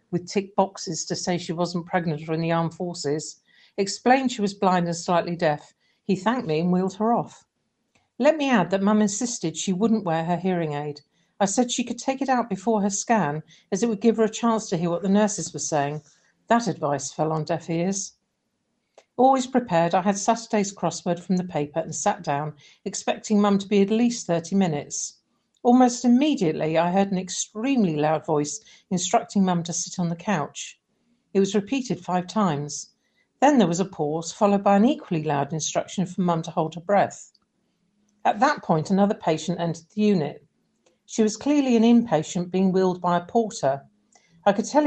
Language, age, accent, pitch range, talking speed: English, 50-69, British, 170-220 Hz, 195 wpm